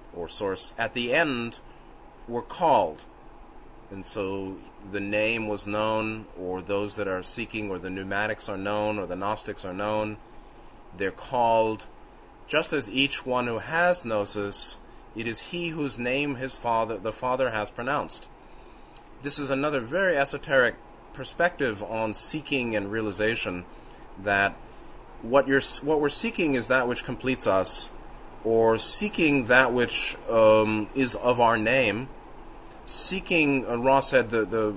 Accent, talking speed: American, 145 wpm